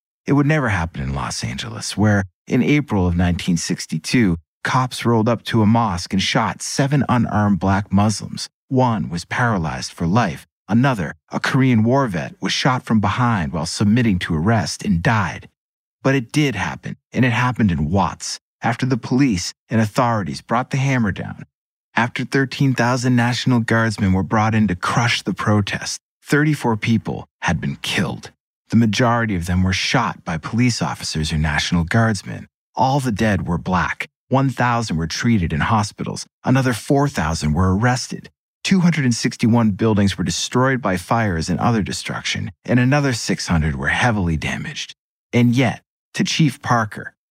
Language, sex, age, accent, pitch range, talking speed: English, male, 30-49, American, 95-130 Hz, 155 wpm